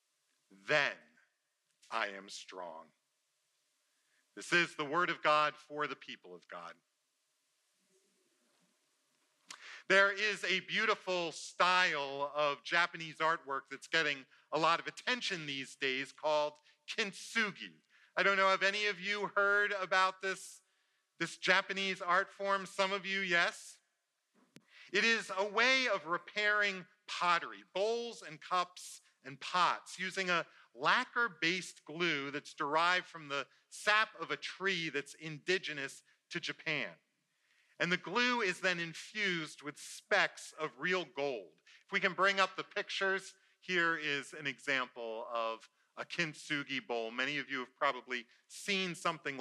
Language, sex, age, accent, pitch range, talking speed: English, male, 40-59, American, 150-195 Hz, 135 wpm